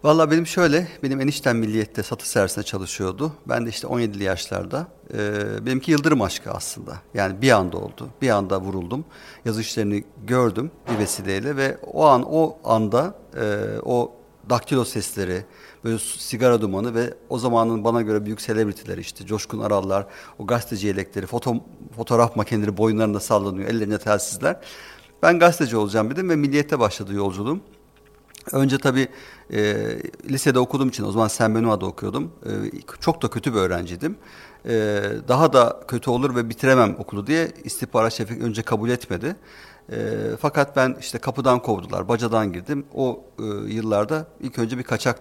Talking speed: 155 wpm